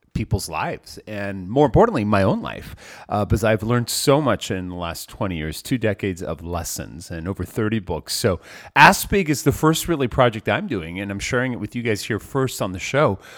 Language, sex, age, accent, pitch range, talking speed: English, male, 40-59, American, 100-130 Hz, 220 wpm